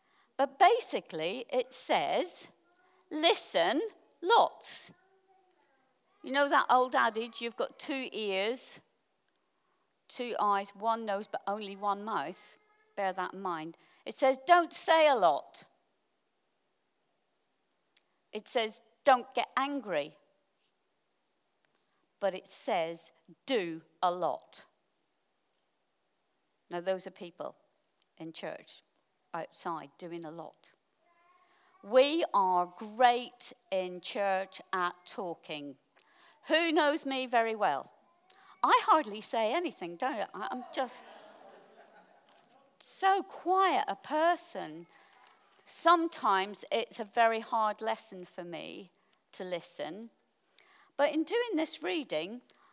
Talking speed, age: 105 wpm, 50-69